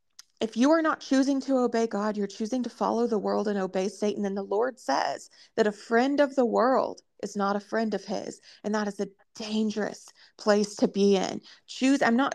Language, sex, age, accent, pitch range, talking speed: English, female, 30-49, American, 210-265 Hz, 220 wpm